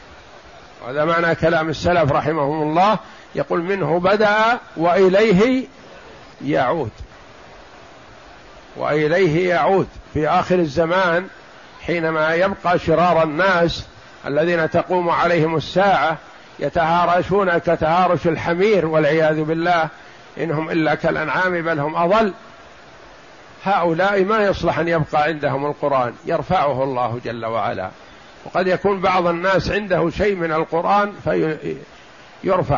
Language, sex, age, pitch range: Arabic, male, 50-69, 145-180 Hz